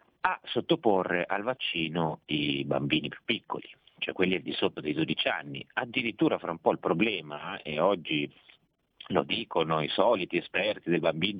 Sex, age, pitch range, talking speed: male, 40-59, 80-110 Hz, 160 wpm